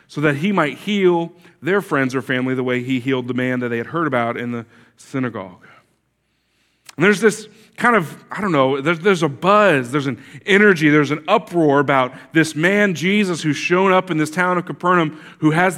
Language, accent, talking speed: English, American, 210 wpm